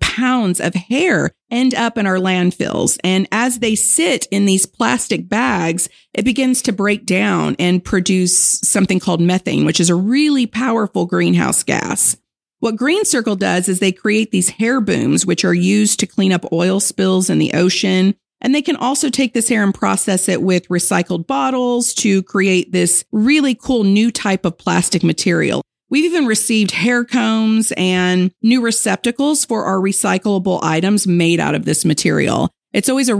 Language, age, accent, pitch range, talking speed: English, 40-59, American, 180-230 Hz, 175 wpm